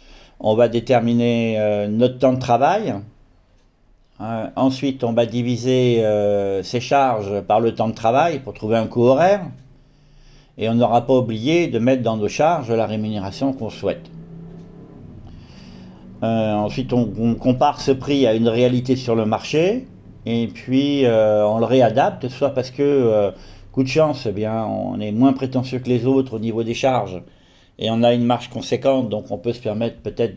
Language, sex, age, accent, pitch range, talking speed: French, male, 50-69, French, 105-130 Hz, 175 wpm